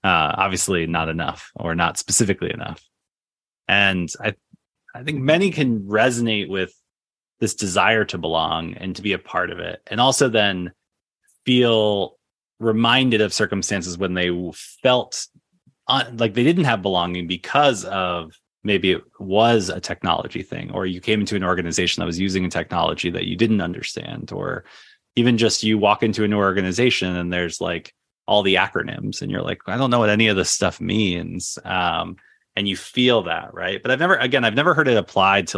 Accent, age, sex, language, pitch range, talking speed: American, 30-49, male, English, 90-115 Hz, 185 wpm